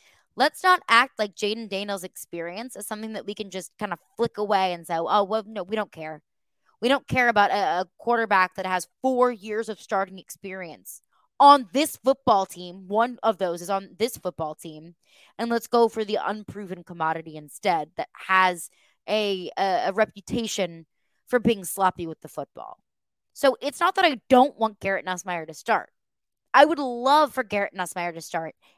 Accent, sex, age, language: American, female, 20-39, English